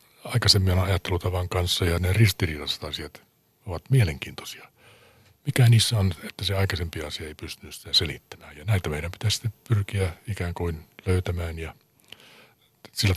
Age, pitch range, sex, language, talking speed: 60-79, 85-110 Hz, male, Finnish, 130 wpm